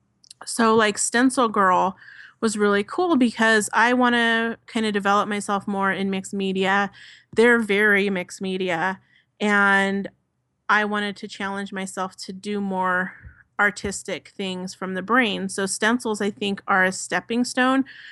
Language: English